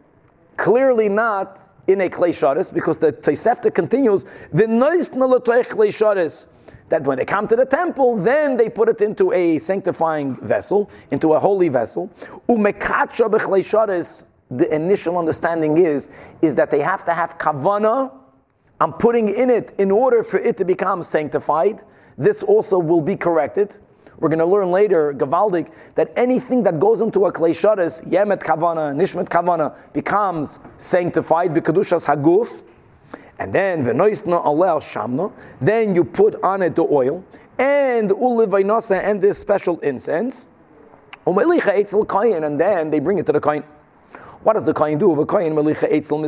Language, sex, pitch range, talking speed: English, male, 160-225 Hz, 135 wpm